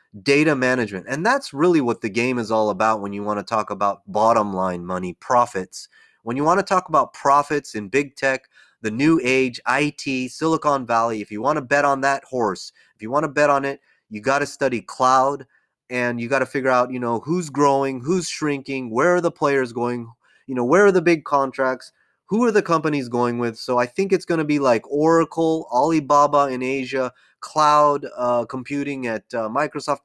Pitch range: 120-150 Hz